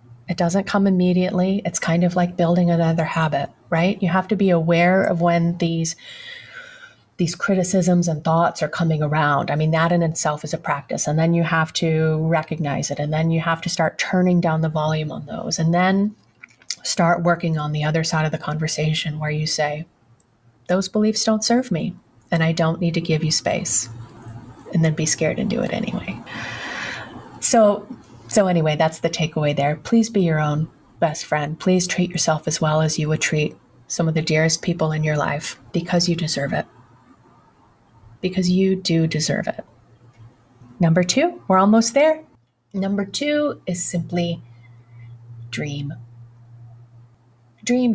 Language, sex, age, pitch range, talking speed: English, female, 30-49, 150-180 Hz, 175 wpm